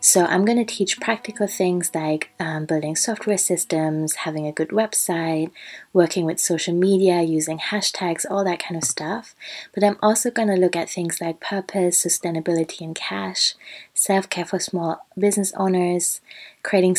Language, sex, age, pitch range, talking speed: English, female, 20-39, 165-195 Hz, 165 wpm